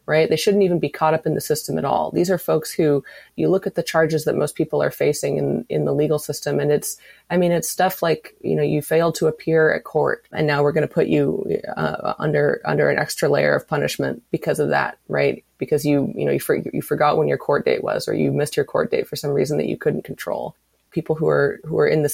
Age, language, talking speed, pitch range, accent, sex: 20-39, English, 265 wpm, 145-175 Hz, American, female